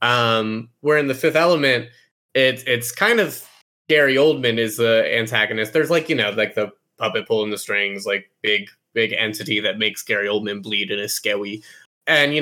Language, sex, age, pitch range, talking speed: English, male, 20-39, 110-145 Hz, 190 wpm